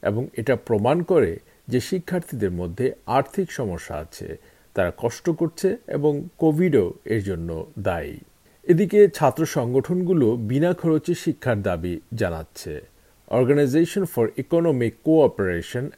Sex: male